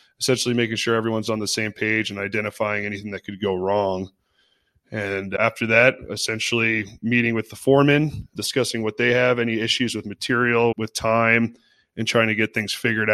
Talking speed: 180 wpm